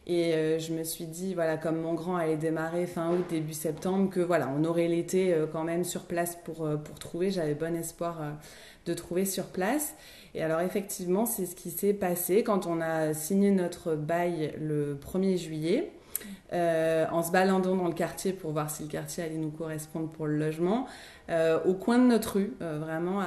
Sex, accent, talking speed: female, French, 200 wpm